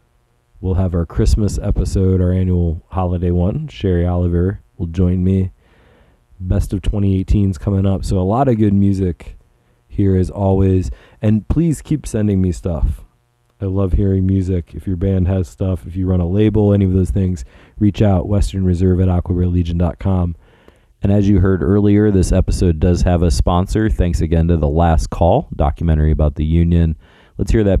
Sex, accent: male, American